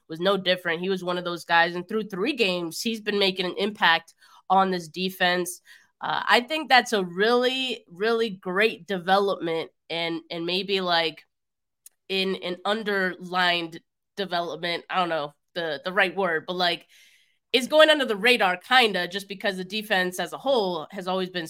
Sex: female